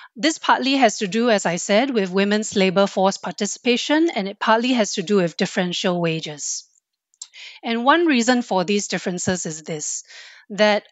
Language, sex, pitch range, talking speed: English, female, 180-225 Hz, 170 wpm